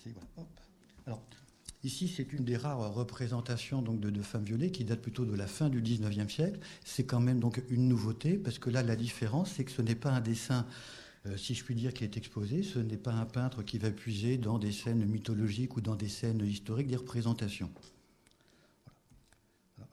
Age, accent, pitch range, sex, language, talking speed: 50-69, French, 110-135 Hz, male, French, 210 wpm